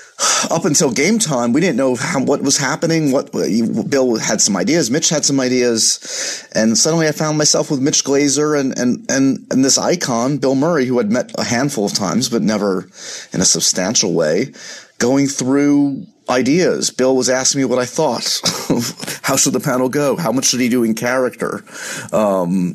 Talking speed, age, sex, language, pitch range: 190 wpm, 30-49, male, English, 110-145 Hz